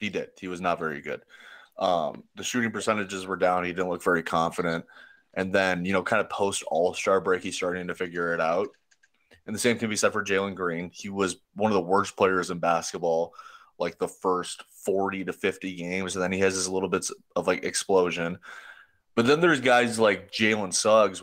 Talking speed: 215 wpm